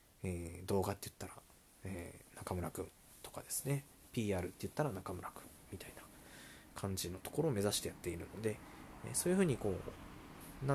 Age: 20-39